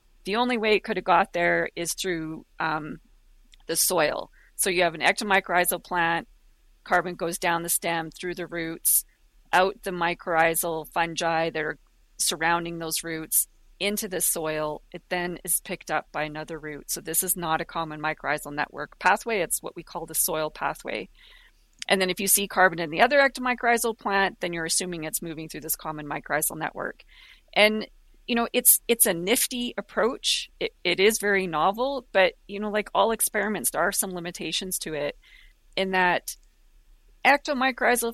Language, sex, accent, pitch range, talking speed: English, female, American, 165-215 Hz, 175 wpm